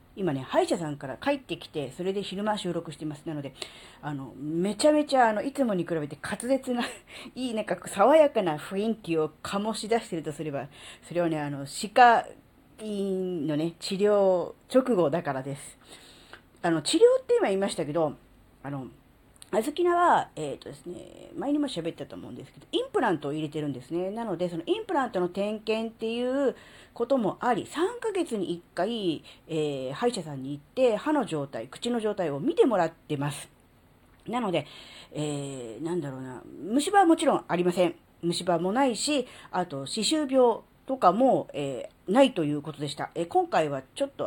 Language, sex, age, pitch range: Japanese, female, 40-59, 155-245 Hz